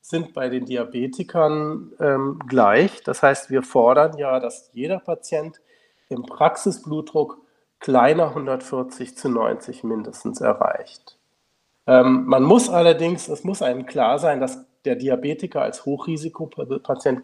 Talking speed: 125 wpm